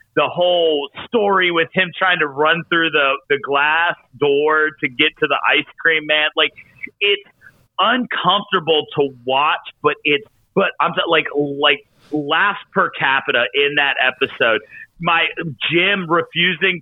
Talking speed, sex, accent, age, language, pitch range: 145 wpm, male, American, 40-59, English, 145-180 Hz